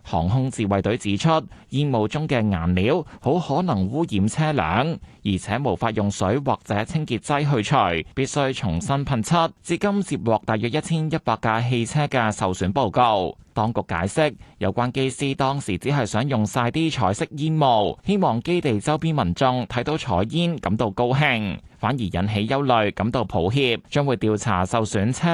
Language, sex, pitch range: Chinese, male, 105-145 Hz